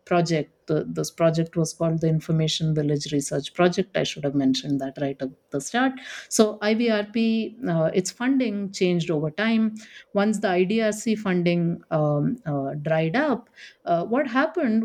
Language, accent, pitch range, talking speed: English, Indian, 170-220 Hz, 160 wpm